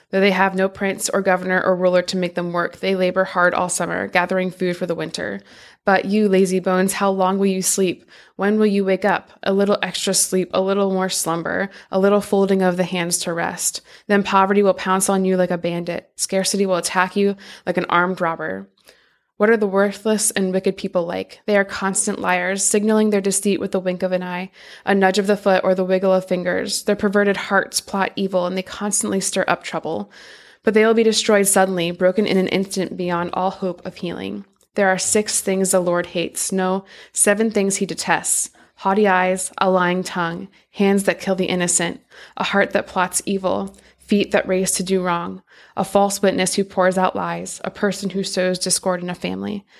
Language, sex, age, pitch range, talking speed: English, female, 20-39, 180-195 Hz, 210 wpm